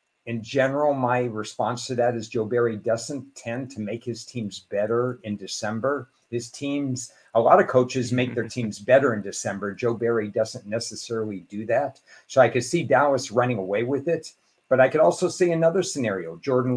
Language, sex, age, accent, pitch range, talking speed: English, male, 50-69, American, 110-130 Hz, 190 wpm